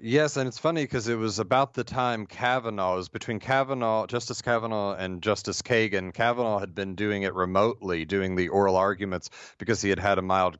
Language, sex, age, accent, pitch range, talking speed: English, male, 40-59, American, 95-115 Hz, 185 wpm